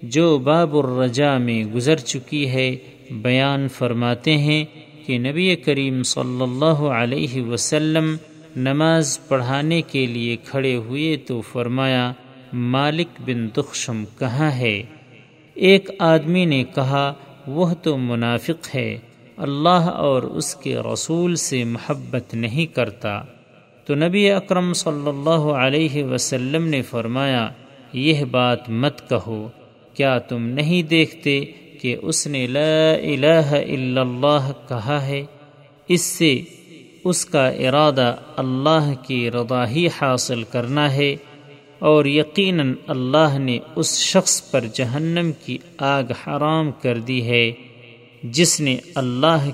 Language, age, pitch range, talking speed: Urdu, 40-59, 125-155 Hz, 120 wpm